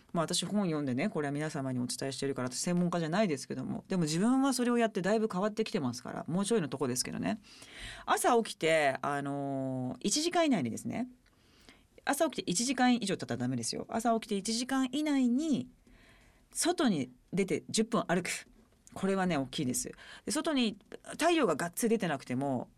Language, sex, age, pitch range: Japanese, female, 40-59, 150-235 Hz